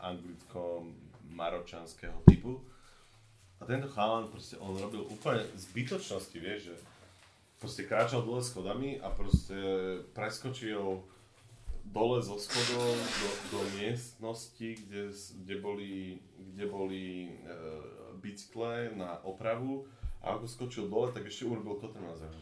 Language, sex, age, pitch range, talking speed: Slovak, male, 30-49, 85-110 Hz, 105 wpm